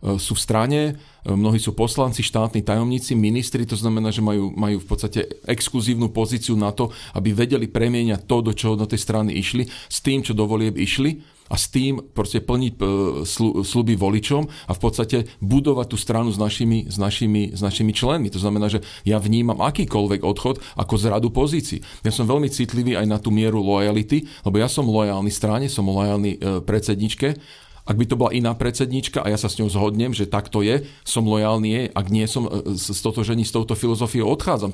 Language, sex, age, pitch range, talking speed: Slovak, male, 40-59, 105-125 Hz, 200 wpm